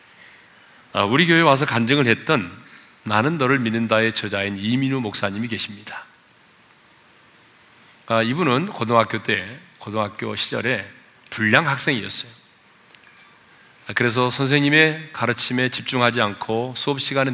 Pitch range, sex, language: 110-145 Hz, male, Korean